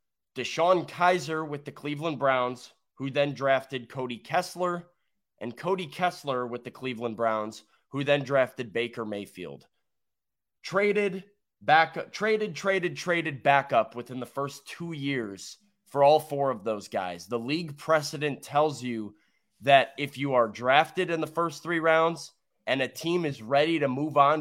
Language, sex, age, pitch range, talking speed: English, male, 20-39, 120-160 Hz, 155 wpm